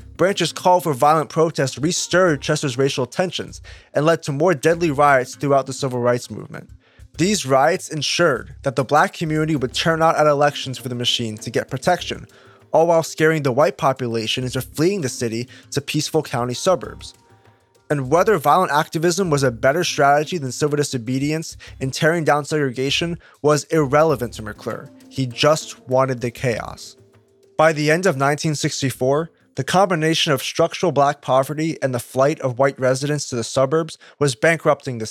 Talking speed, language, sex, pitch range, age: 170 wpm, English, male, 130-165 Hz, 20-39